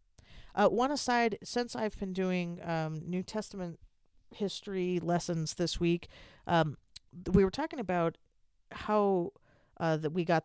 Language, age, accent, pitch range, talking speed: English, 40-59, American, 145-180 Hz, 140 wpm